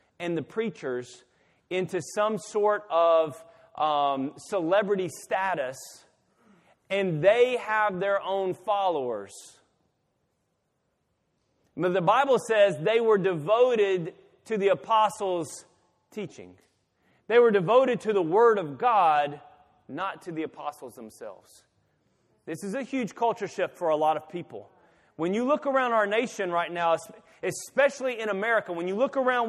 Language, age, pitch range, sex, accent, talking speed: English, 30-49, 160-215 Hz, male, American, 135 wpm